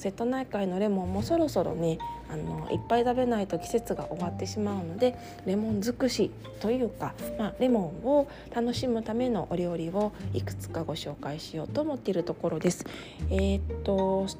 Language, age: Japanese, 20-39